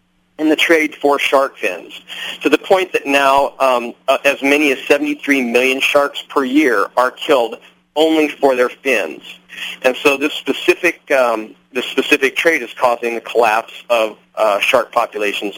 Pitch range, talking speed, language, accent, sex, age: 120-155 Hz, 165 wpm, English, American, male, 40-59